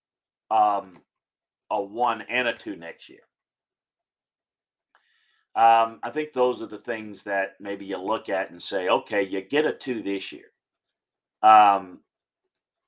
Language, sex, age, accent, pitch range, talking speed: English, male, 40-59, American, 100-135 Hz, 140 wpm